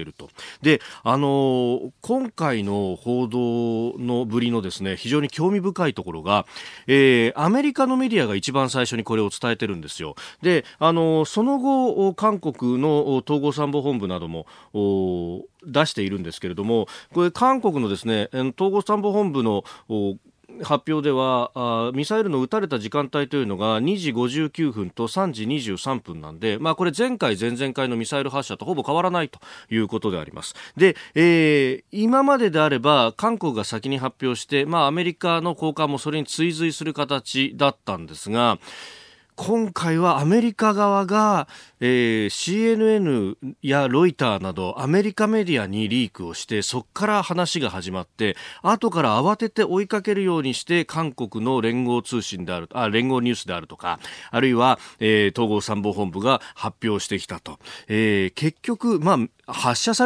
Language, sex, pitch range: Japanese, male, 110-175 Hz